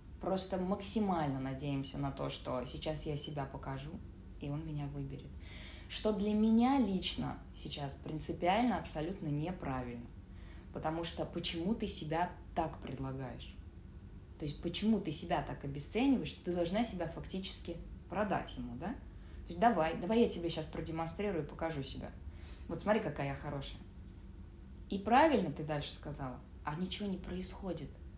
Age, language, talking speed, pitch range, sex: 20-39, Russian, 145 wpm, 125-195 Hz, female